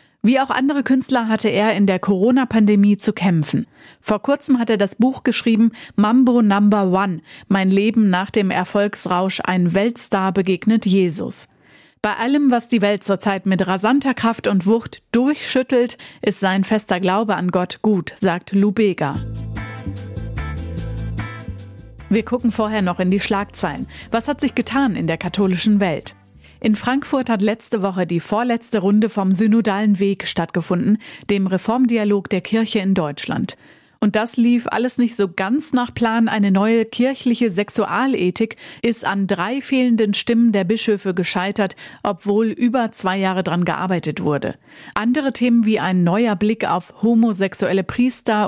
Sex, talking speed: female, 150 wpm